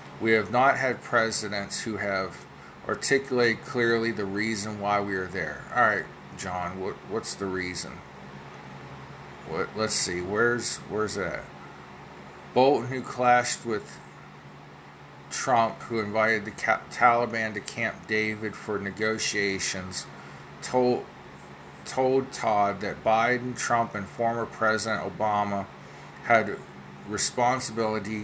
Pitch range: 75-110 Hz